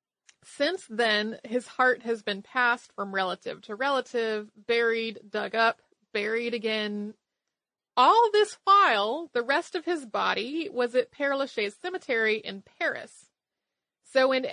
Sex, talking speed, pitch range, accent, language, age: female, 135 wpm, 220-285 Hz, American, English, 30-49